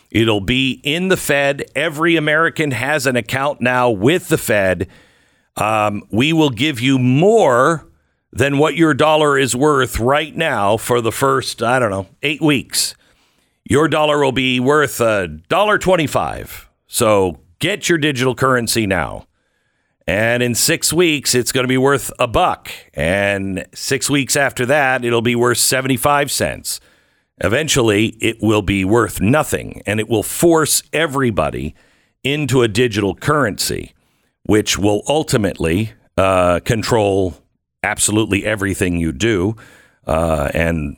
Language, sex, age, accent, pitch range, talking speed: English, male, 50-69, American, 90-135 Hz, 140 wpm